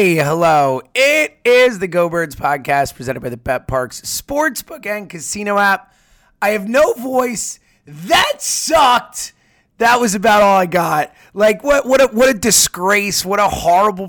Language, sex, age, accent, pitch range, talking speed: English, male, 30-49, American, 165-245 Hz, 165 wpm